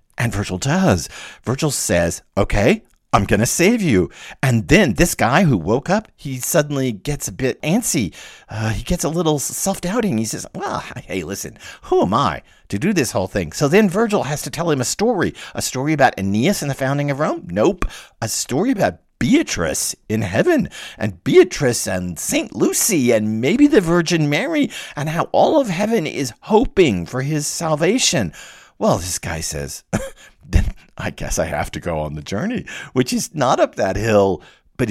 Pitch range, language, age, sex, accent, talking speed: 110-180 Hz, English, 50-69, male, American, 185 wpm